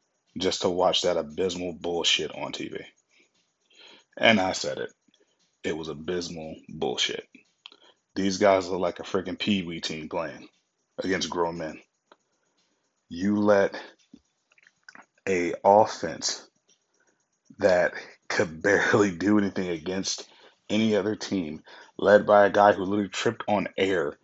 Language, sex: English, male